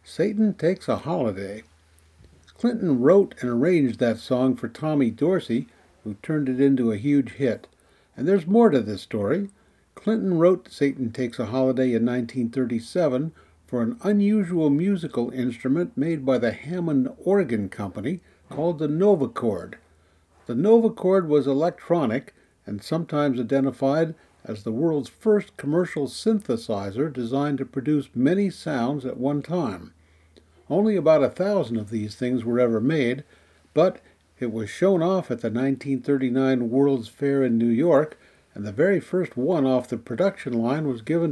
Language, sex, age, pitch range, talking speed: English, male, 60-79, 115-170 Hz, 150 wpm